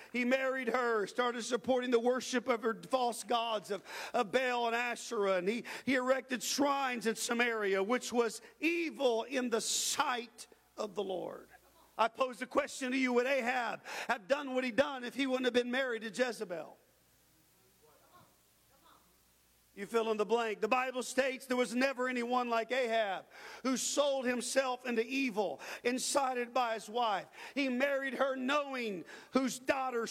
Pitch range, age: 240-270 Hz, 50-69